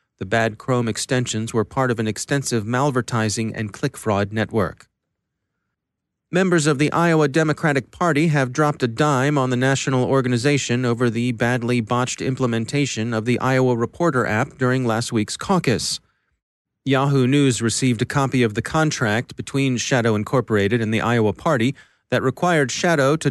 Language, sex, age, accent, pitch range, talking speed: English, male, 30-49, American, 115-140 Hz, 155 wpm